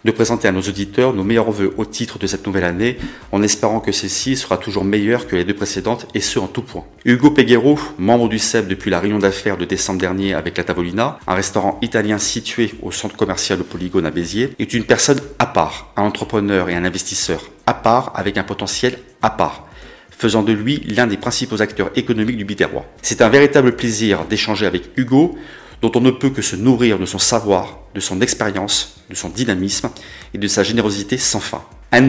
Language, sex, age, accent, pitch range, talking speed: French, male, 30-49, French, 100-125 Hz, 210 wpm